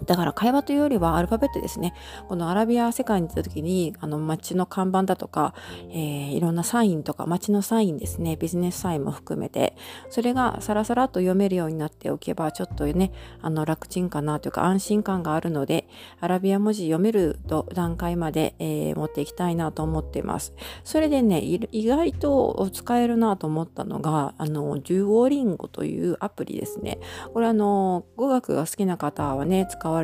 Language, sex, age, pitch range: Japanese, female, 40-59, 155-220 Hz